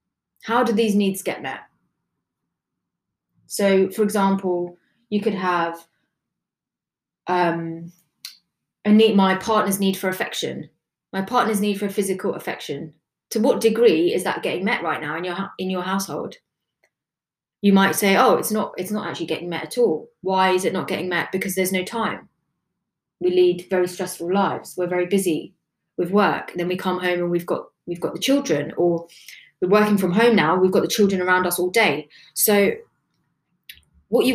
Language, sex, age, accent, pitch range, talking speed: English, female, 20-39, British, 180-210 Hz, 180 wpm